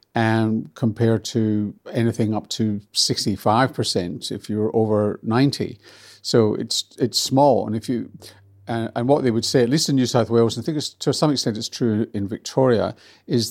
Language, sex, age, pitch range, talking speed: English, male, 50-69, 105-120 Hz, 195 wpm